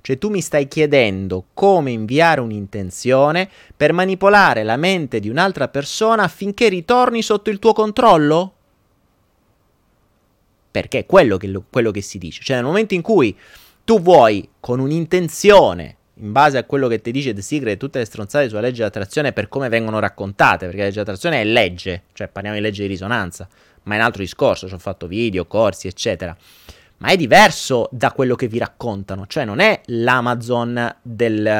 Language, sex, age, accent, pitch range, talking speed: Italian, male, 30-49, native, 100-150 Hz, 180 wpm